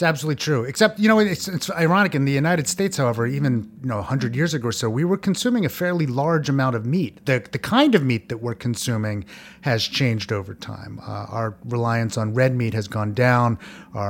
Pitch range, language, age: 115-165 Hz, English, 30-49